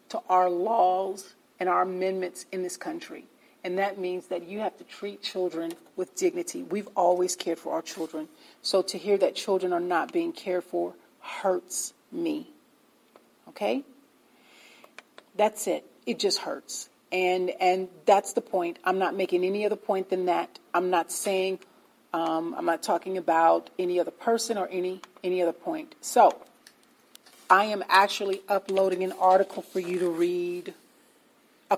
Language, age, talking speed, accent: English, 40-59, 160 wpm, American